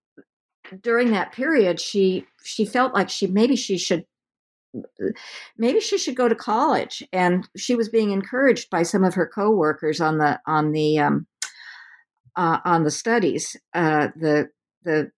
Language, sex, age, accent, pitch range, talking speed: English, female, 50-69, American, 160-215 Hz, 155 wpm